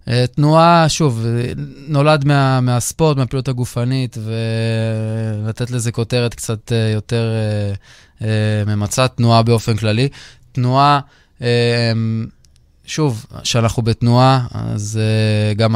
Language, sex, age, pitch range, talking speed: Hebrew, male, 20-39, 105-125 Hz, 105 wpm